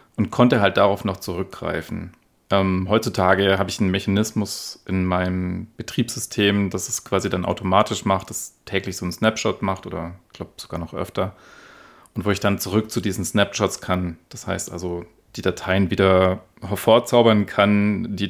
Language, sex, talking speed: German, male, 165 wpm